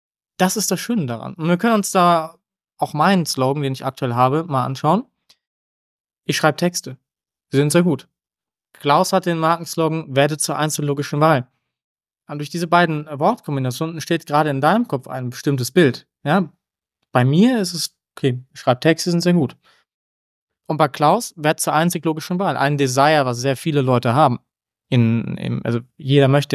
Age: 20-39